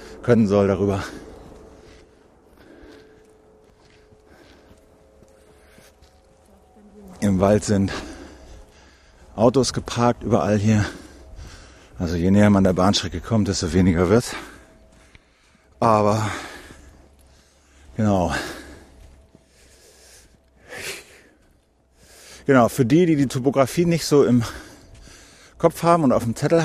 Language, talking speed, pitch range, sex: German, 85 wpm, 90-120 Hz, male